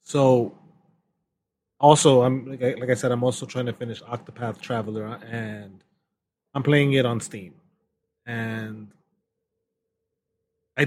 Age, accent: 20-39, American